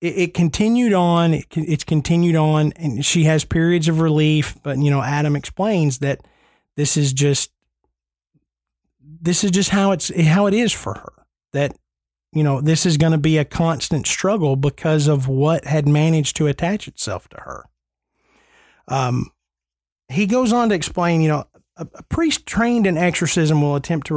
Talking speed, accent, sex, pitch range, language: 170 wpm, American, male, 140-175 Hz, English